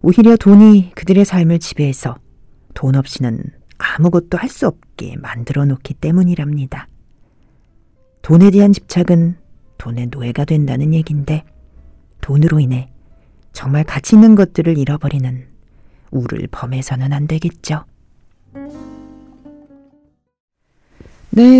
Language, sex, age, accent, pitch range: Korean, female, 40-59, native, 140-210 Hz